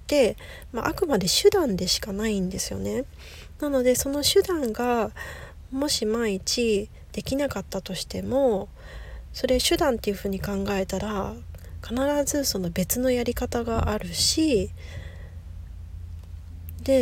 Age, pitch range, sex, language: 40-59, 195-265 Hz, female, Japanese